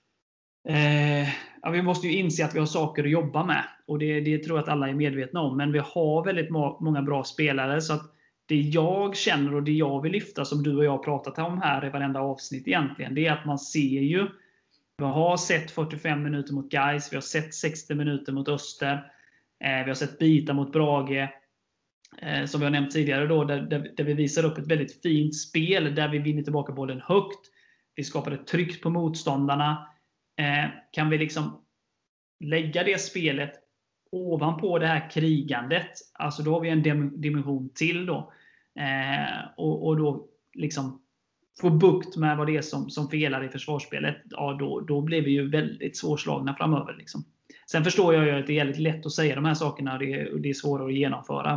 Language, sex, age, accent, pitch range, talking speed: Swedish, male, 30-49, native, 140-160 Hz, 195 wpm